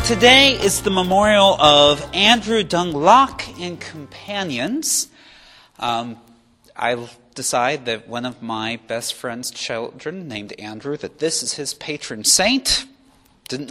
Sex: male